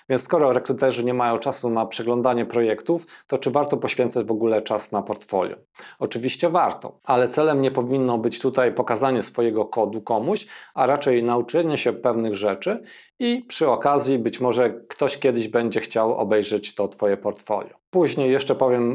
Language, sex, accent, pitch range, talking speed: Polish, male, native, 115-135 Hz, 165 wpm